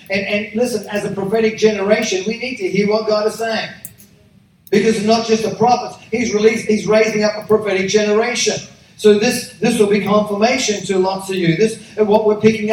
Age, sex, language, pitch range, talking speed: 50-69, male, English, 195-220 Hz, 205 wpm